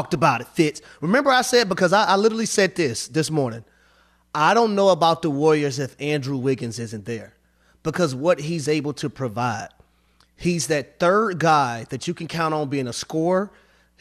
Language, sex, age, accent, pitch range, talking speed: English, male, 30-49, American, 145-195 Hz, 185 wpm